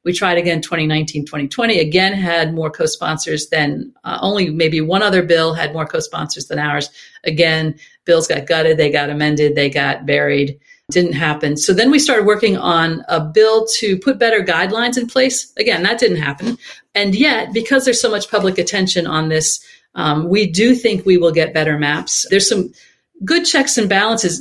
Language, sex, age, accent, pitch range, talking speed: English, female, 40-59, American, 160-210 Hz, 185 wpm